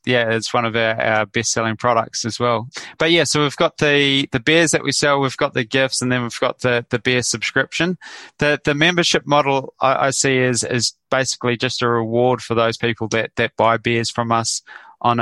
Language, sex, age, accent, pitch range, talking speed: English, male, 20-39, Australian, 120-135 Hz, 220 wpm